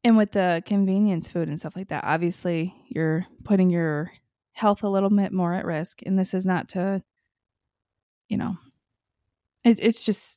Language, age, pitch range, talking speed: English, 20-39, 170-210 Hz, 175 wpm